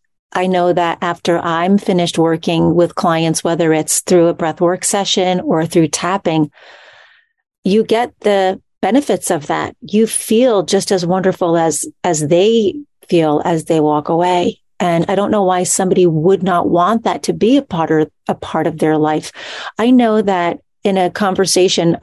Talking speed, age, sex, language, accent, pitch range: 170 wpm, 40-59, female, English, American, 170-200 Hz